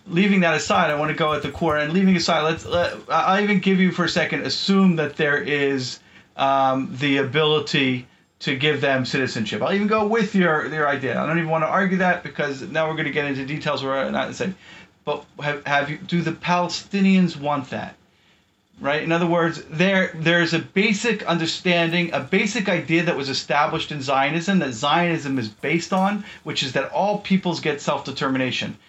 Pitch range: 140-185 Hz